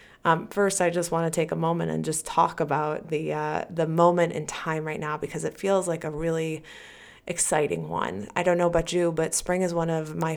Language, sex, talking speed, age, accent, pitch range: English, female, 230 wpm, 20-39, American, 155-185 Hz